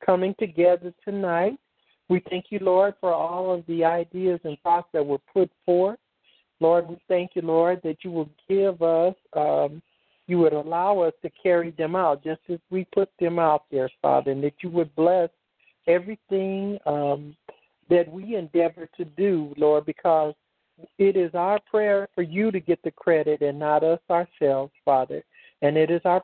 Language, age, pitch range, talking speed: English, 60-79, 155-185 Hz, 180 wpm